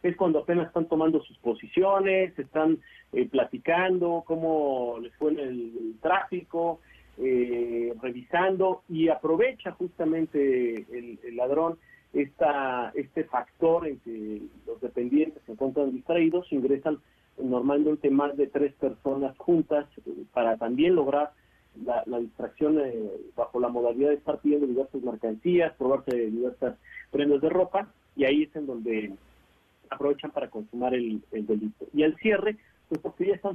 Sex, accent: male, Mexican